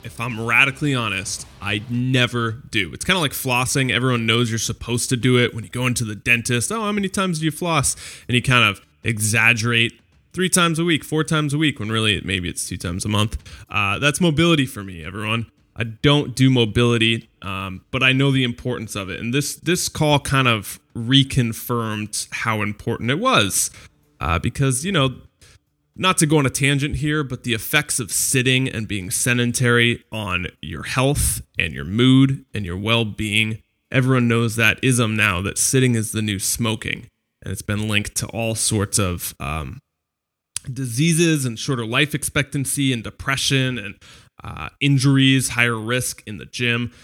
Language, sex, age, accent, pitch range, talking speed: English, male, 20-39, American, 105-135 Hz, 185 wpm